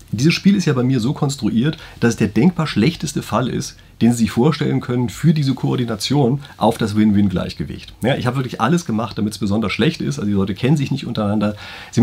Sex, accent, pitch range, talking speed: male, German, 105-145 Hz, 225 wpm